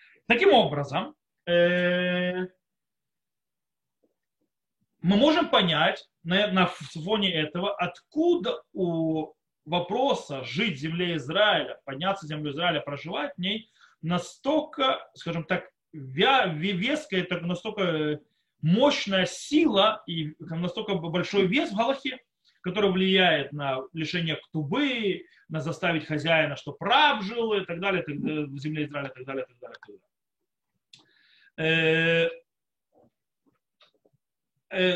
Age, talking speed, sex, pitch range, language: 30-49, 115 wpm, male, 165-235 Hz, Russian